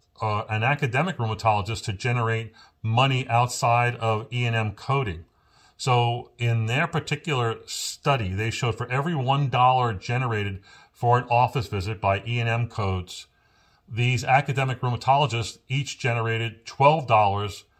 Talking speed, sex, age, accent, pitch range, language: 125 wpm, male, 40-59, American, 110-125 Hz, English